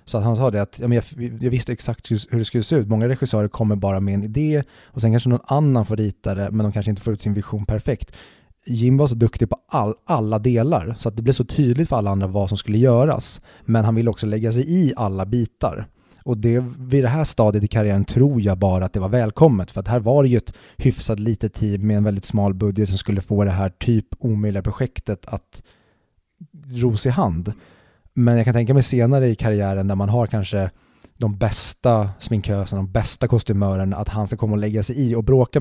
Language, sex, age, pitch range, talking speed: Swedish, male, 30-49, 105-120 Hz, 240 wpm